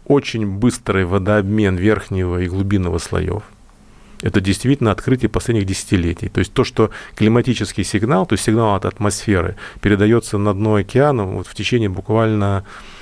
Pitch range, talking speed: 95-110 Hz, 145 wpm